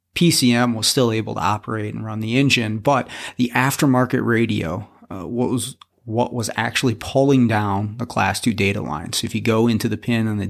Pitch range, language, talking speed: 105-120 Hz, English, 200 wpm